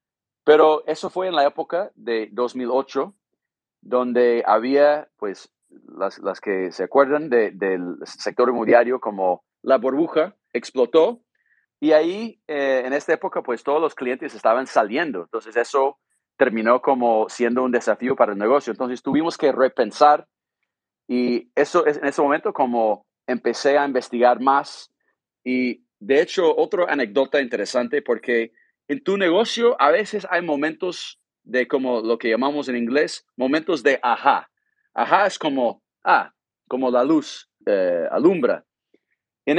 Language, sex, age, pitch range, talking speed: Spanish, male, 40-59, 120-155 Hz, 145 wpm